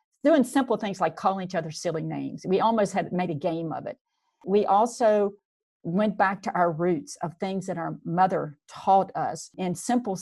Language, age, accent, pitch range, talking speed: English, 50-69, American, 170-220 Hz, 195 wpm